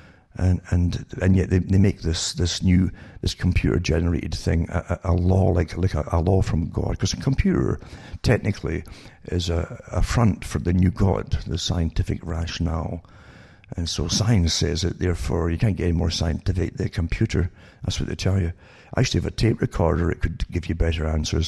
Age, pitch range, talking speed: 60-79, 85-110 Hz, 200 wpm